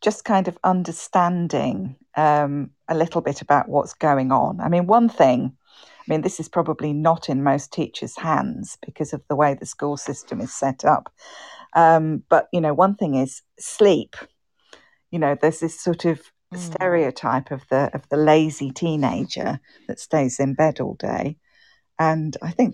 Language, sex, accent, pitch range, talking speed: English, female, British, 145-175 Hz, 175 wpm